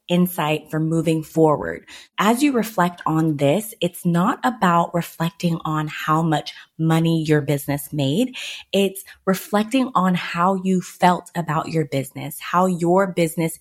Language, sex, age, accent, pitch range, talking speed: English, female, 20-39, American, 160-195 Hz, 140 wpm